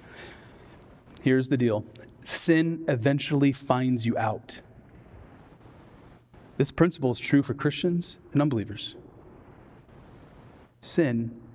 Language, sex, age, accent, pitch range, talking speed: English, male, 30-49, American, 150-190 Hz, 90 wpm